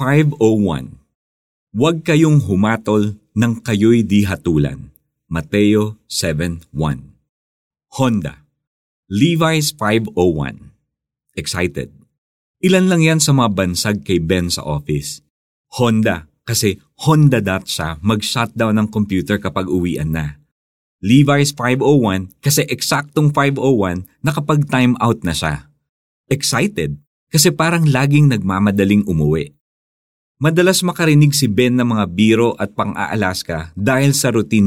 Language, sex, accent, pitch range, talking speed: Filipino, male, native, 90-135 Hz, 105 wpm